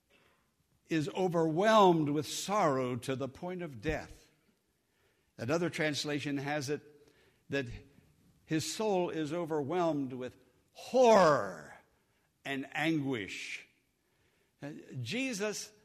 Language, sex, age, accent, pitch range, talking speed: English, male, 60-79, American, 140-195 Hz, 85 wpm